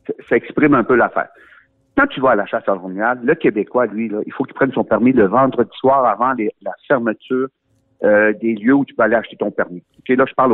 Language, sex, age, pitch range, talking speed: French, male, 60-79, 120-175 Hz, 250 wpm